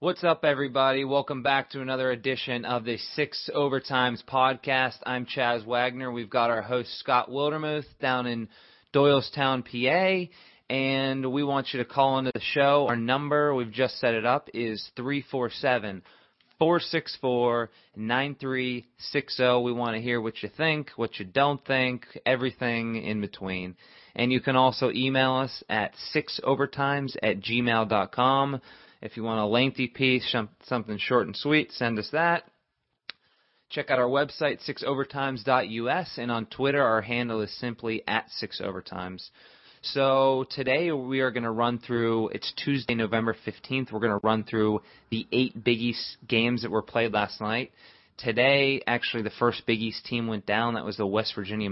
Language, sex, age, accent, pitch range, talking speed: English, male, 30-49, American, 110-130 Hz, 155 wpm